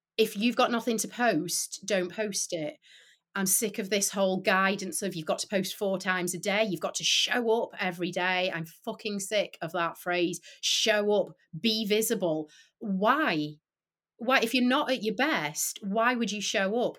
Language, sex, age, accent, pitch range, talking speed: English, female, 30-49, British, 180-230 Hz, 190 wpm